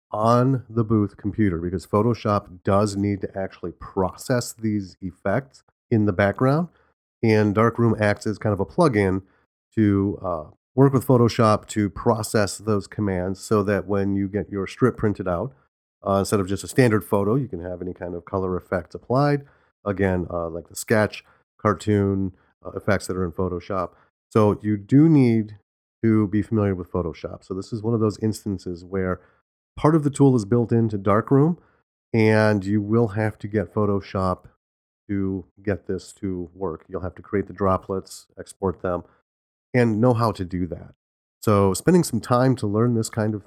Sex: male